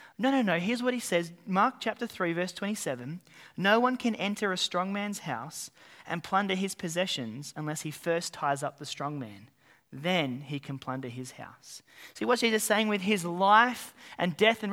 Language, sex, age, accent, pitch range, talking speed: English, male, 30-49, Australian, 155-210 Hz, 200 wpm